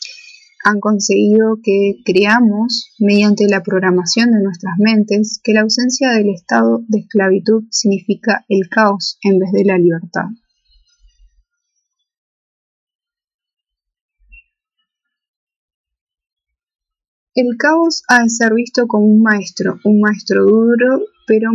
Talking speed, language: 105 wpm, Spanish